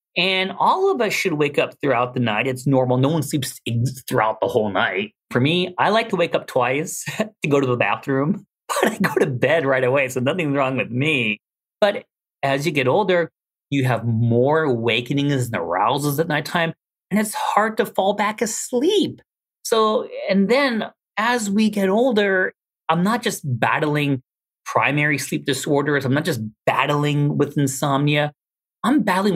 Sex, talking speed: male, 175 wpm